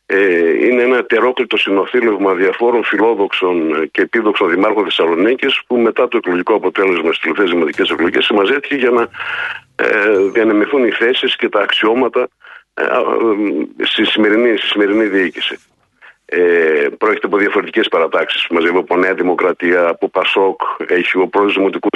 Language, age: Greek, 50-69